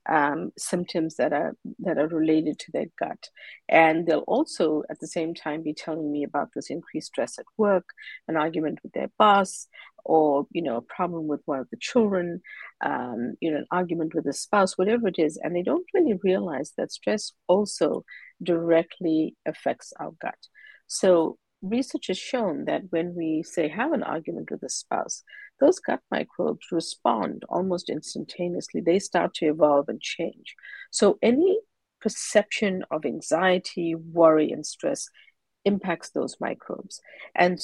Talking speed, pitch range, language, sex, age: 165 wpm, 160-215 Hz, English, female, 50-69